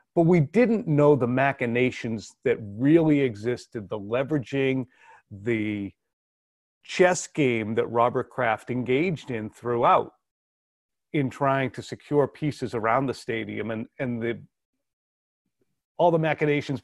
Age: 40-59